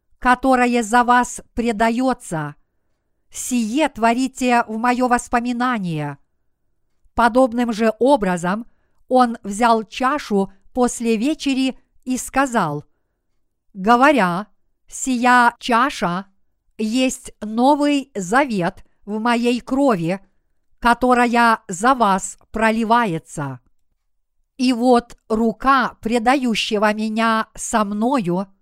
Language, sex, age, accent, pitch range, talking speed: Russian, female, 50-69, native, 205-250 Hz, 80 wpm